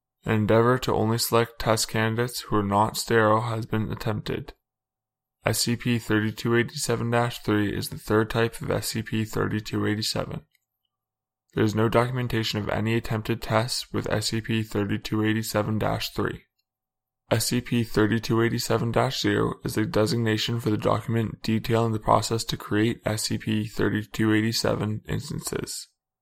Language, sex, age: English, male, 10-29